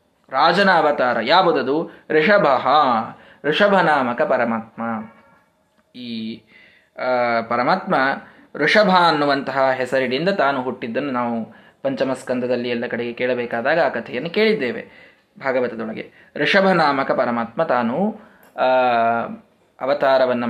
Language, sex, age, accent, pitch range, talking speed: Kannada, male, 20-39, native, 125-180 Hz, 80 wpm